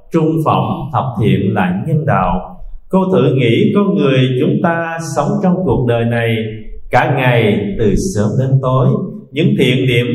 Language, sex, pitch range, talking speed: Vietnamese, male, 125-185 Hz, 165 wpm